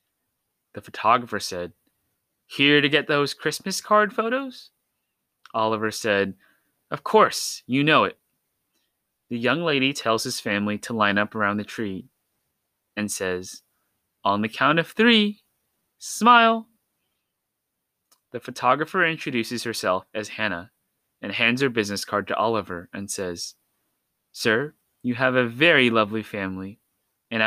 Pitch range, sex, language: 105-140 Hz, male, English